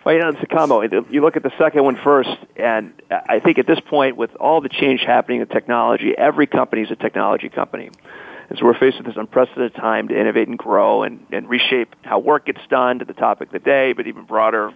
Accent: American